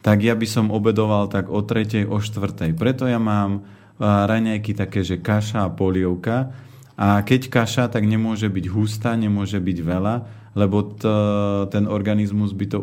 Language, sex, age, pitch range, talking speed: Slovak, male, 30-49, 95-110 Hz, 170 wpm